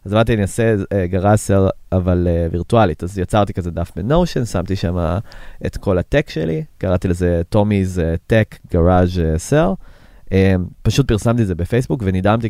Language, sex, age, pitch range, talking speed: Hebrew, male, 30-49, 90-110 Hz, 150 wpm